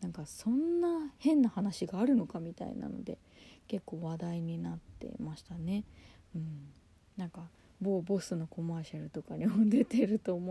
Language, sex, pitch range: Japanese, female, 145-225 Hz